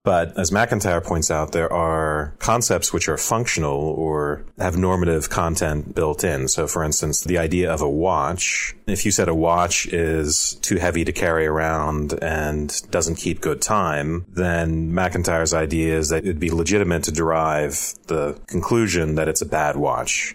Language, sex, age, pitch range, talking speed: English, male, 30-49, 75-85 Hz, 170 wpm